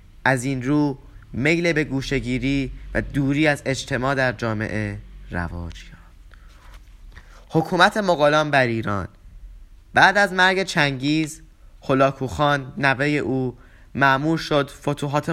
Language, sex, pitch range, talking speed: Persian, male, 100-145 Hz, 110 wpm